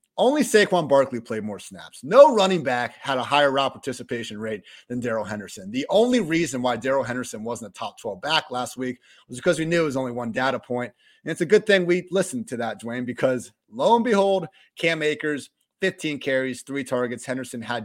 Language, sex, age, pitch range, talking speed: English, male, 30-49, 120-155 Hz, 210 wpm